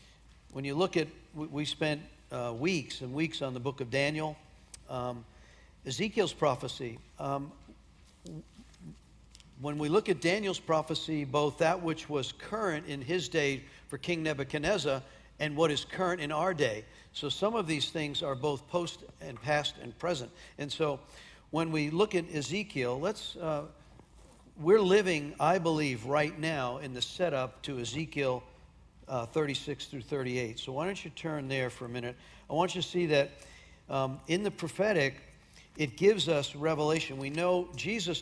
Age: 50-69